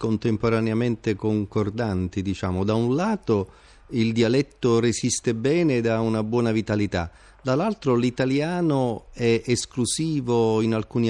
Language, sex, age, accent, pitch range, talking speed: Italian, male, 40-59, native, 110-135 Hz, 115 wpm